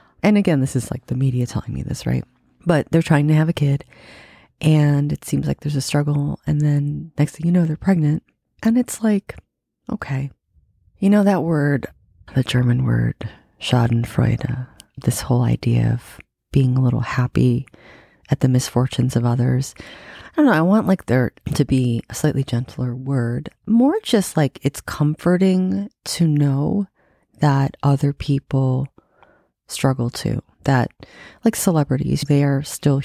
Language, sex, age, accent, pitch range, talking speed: English, female, 30-49, American, 125-155 Hz, 160 wpm